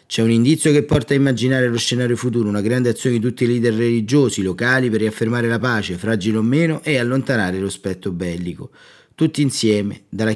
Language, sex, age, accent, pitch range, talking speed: Italian, male, 30-49, native, 105-130 Hz, 195 wpm